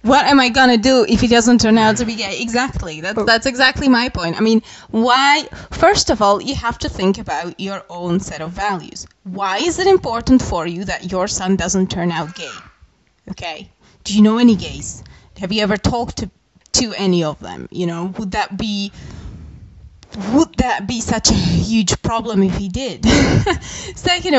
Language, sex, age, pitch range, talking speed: English, female, 20-39, 195-255 Hz, 195 wpm